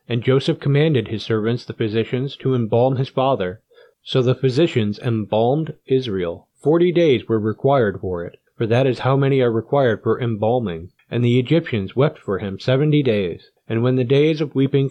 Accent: American